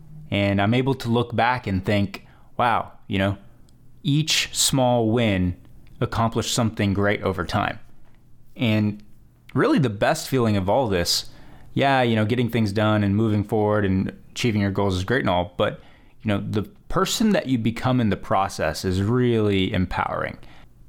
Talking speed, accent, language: 165 wpm, American, English